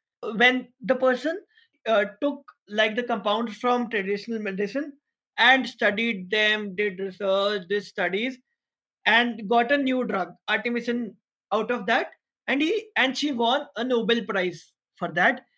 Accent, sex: Indian, male